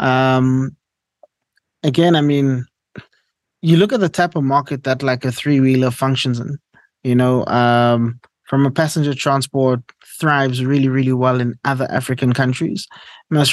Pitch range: 130-145 Hz